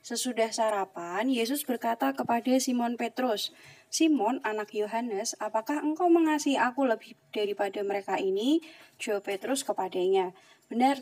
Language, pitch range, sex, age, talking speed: Indonesian, 200-255 Hz, female, 20-39, 120 wpm